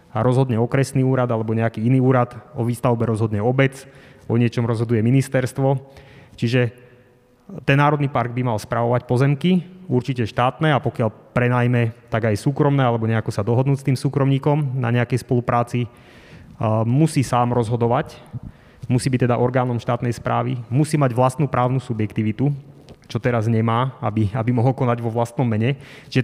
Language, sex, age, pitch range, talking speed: Slovak, male, 30-49, 120-135 Hz, 155 wpm